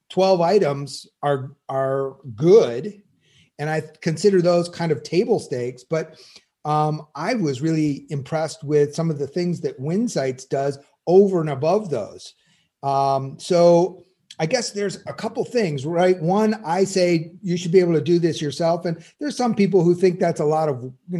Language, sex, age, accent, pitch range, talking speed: English, male, 40-59, American, 145-175 Hz, 175 wpm